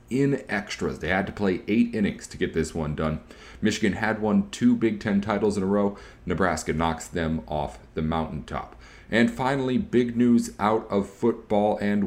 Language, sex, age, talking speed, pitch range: English, male, 30-49, 185 wpm, 85-110 Hz